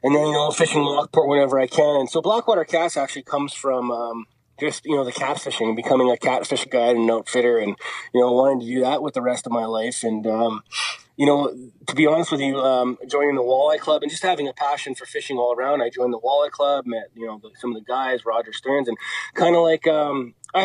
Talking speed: 245 wpm